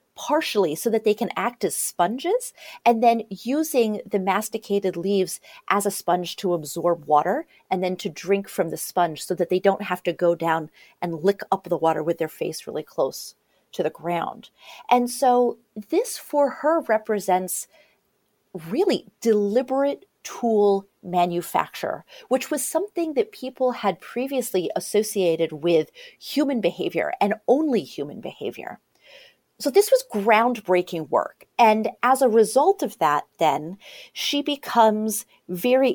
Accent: American